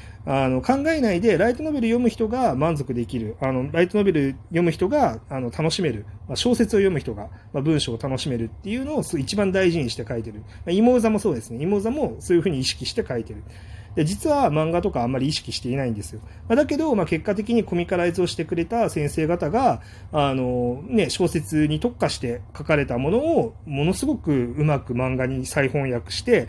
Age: 30-49